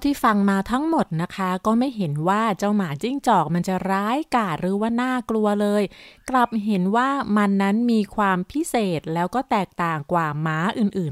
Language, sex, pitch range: Thai, female, 180-235 Hz